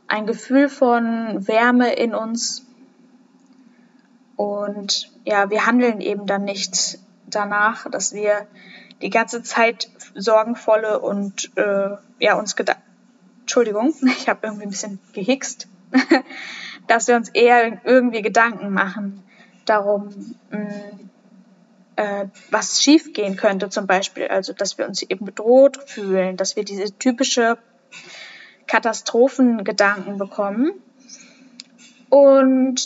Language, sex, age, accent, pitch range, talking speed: German, female, 10-29, German, 205-250 Hz, 110 wpm